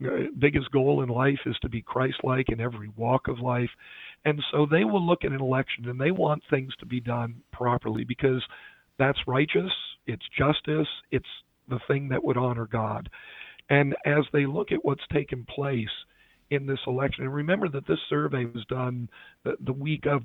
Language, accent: English, American